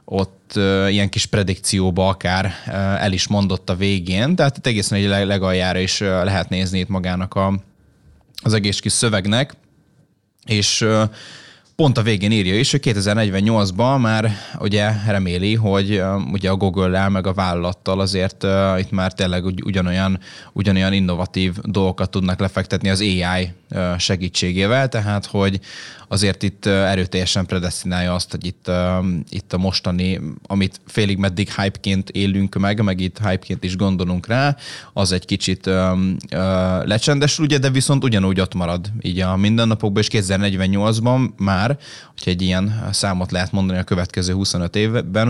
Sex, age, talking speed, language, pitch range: male, 20-39, 145 wpm, Hungarian, 95-105 Hz